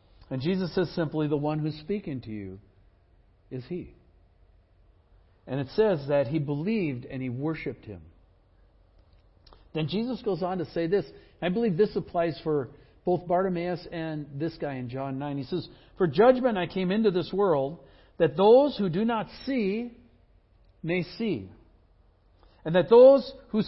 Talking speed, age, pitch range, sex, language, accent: 160 wpm, 60-79, 135-210 Hz, male, English, American